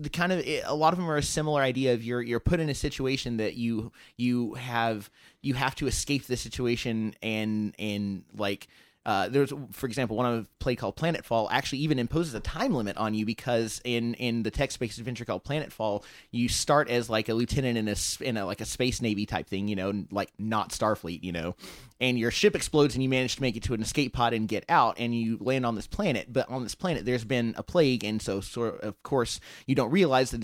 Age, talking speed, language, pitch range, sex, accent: 30-49, 240 wpm, English, 110-135 Hz, male, American